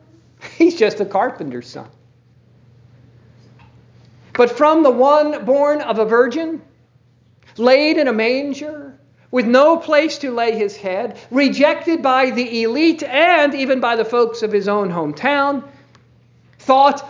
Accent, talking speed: American, 135 wpm